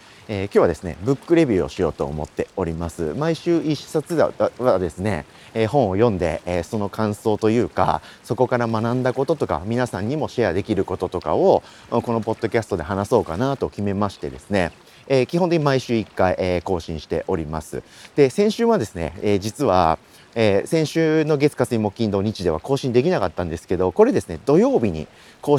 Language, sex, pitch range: Japanese, male, 100-140 Hz